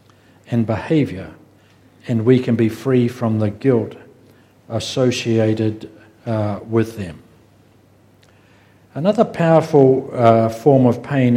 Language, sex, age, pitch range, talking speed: English, male, 60-79, 115-135 Hz, 105 wpm